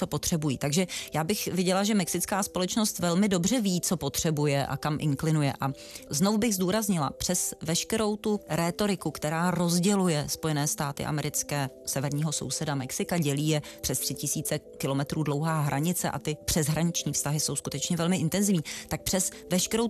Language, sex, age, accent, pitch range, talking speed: Czech, female, 30-49, native, 150-185 Hz, 155 wpm